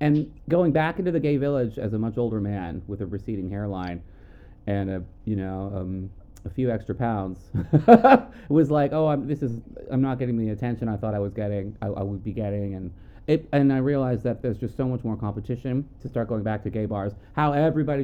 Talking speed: 225 wpm